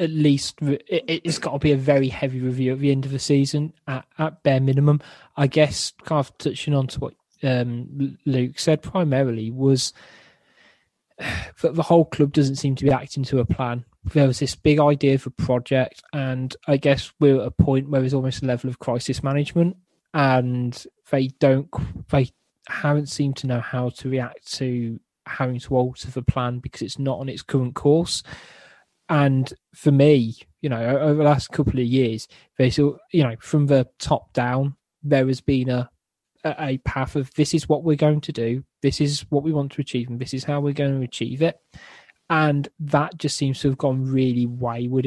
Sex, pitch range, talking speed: male, 130-150 Hz, 200 wpm